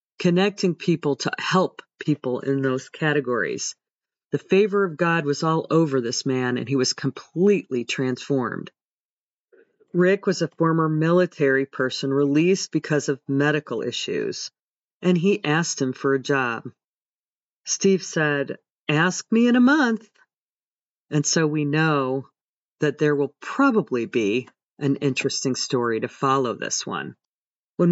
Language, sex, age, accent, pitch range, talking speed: English, female, 40-59, American, 135-180 Hz, 140 wpm